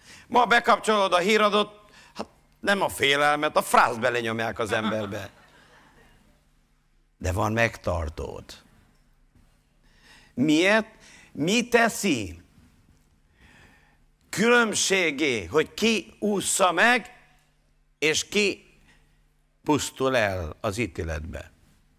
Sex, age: male, 60-79